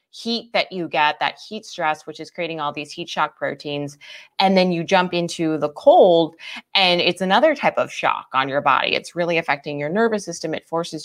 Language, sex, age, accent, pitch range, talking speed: English, female, 20-39, American, 155-215 Hz, 210 wpm